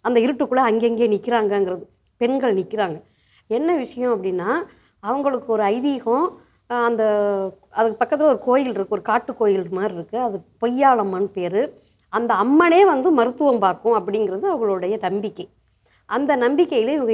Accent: native